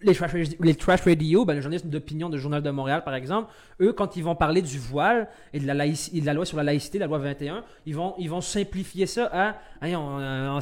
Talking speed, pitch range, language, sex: 260 wpm, 145-200 Hz, French, male